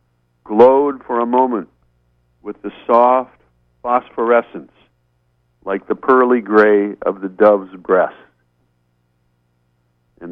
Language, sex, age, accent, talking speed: English, male, 50-69, American, 100 wpm